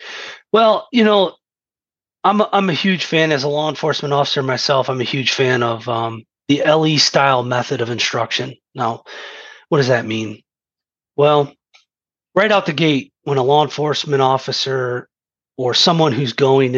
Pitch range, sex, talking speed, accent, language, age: 125-150 Hz, male, 165 wpm, American, English, 30-49